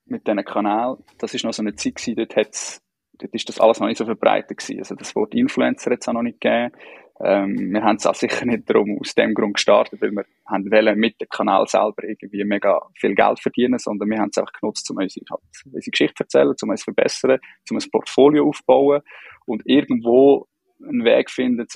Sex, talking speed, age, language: male, 220 wpm, 20-39, German